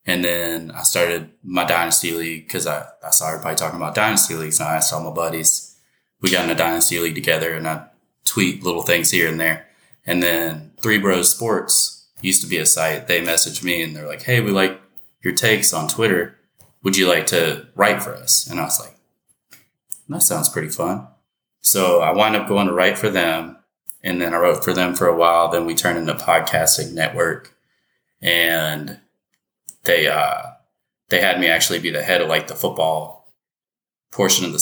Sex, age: male, 20-39